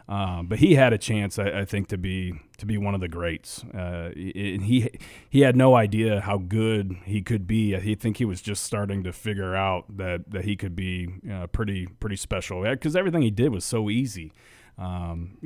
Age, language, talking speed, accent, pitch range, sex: 30-49, English, 205 wpm, American, 95-110 Hz, male